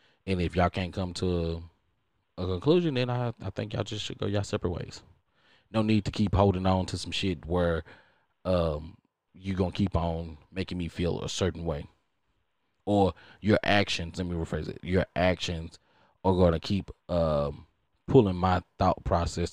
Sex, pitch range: male, 85-100 Hz